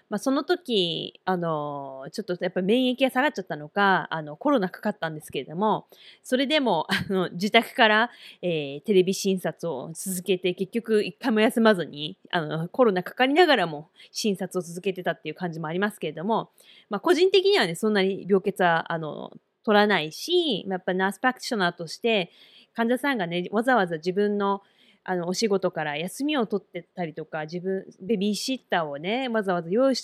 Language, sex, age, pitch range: English, female, 20-39, 175-235 Hz